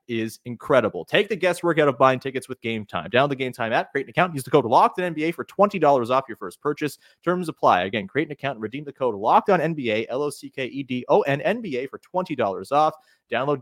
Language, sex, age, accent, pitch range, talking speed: English, male, 30-49, American, 120-170 Hz, 230 wpm